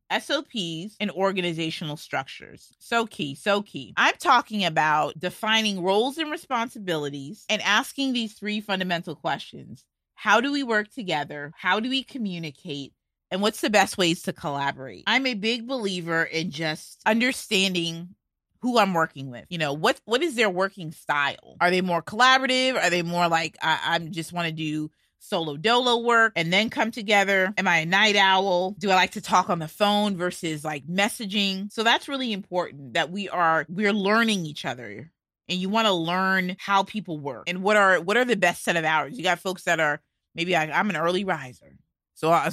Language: English